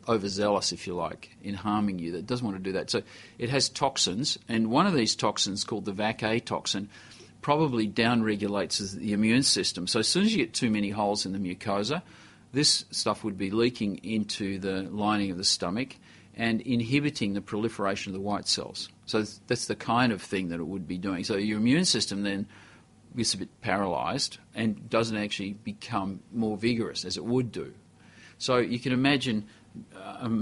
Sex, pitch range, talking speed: male, 100-115 Hz, 190 wpm